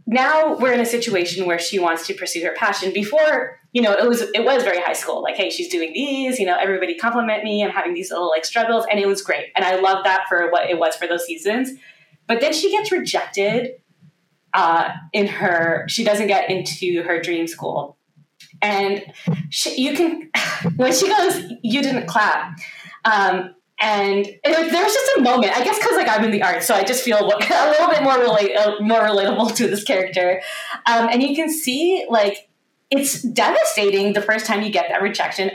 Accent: American